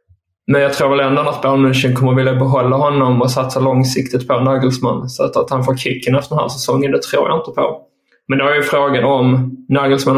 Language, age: English, 20-39